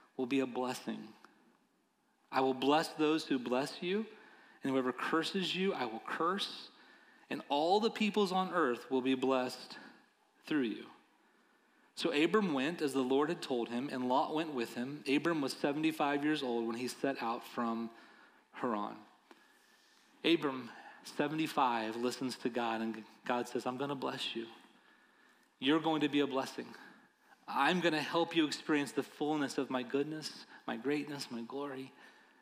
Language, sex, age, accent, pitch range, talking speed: English, male, 30-49, American, 130-180 Hz, 160 wpm